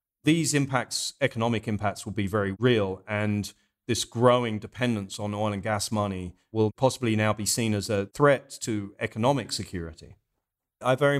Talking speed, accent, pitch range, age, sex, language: 160 wpm, British, 105-125 Hz, 40-59, male, English